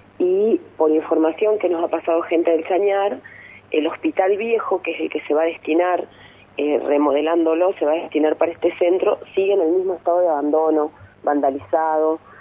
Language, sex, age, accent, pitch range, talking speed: Spanish, female, 30-49, Argentinian, 145-170 Hz, 185 wpm